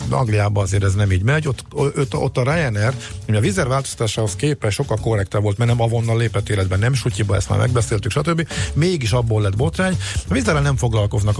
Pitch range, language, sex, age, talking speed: 95-125 Hz, Hungarian, male, 50-69, 190 wpm